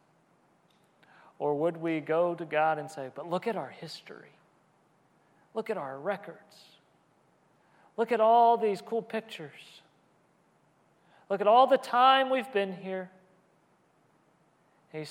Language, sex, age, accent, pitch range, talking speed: English, male, 40-59, American, 155-185 Hz, 125 wpm